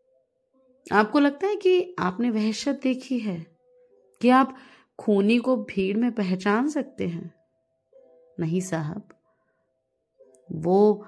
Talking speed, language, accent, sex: 110 wpm, Hindi, native, female